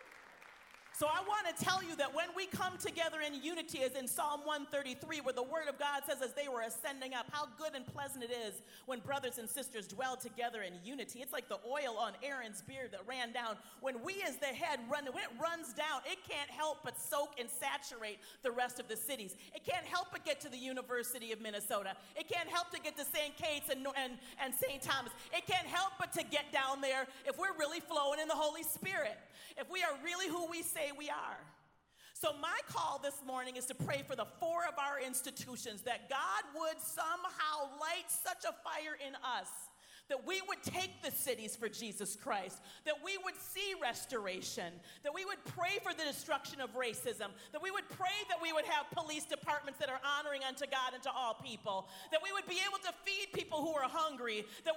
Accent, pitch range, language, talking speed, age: American, 260-350 Hz, English, 220 wpm, 40-59